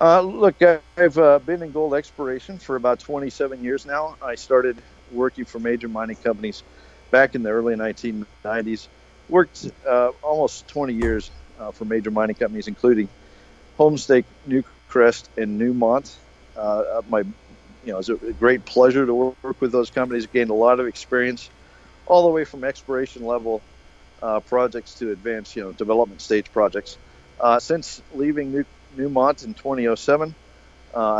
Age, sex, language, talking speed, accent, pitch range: 50-69, male, English, 155 wpm, American, 105-135 Hz